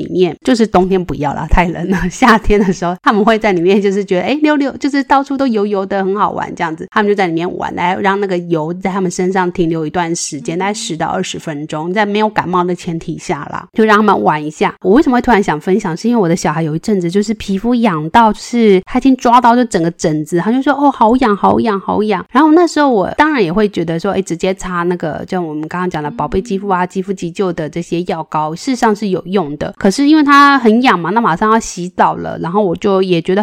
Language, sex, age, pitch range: Chinese, female, 20-39, 175-225 Hz